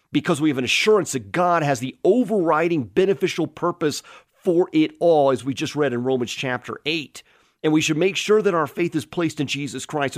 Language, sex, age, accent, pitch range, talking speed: English, male, 40-59, American, 140-185 Hz, 210 wpm